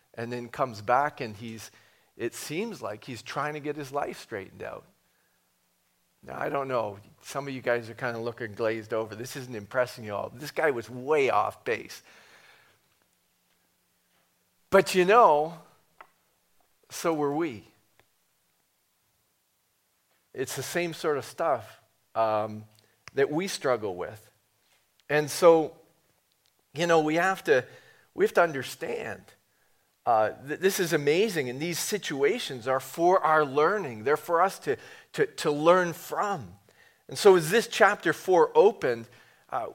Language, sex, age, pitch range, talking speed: English, male, 40-59, 125-185 Hz, 150 wpm